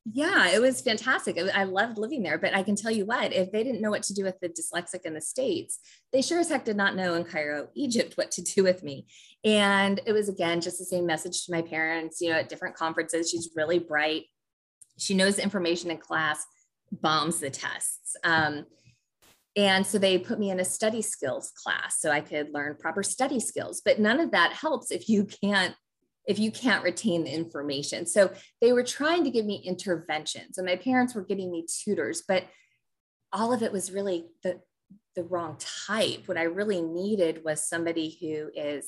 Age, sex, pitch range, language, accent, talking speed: 20-39, female, 160-210 Hz, English, American, 210 wpm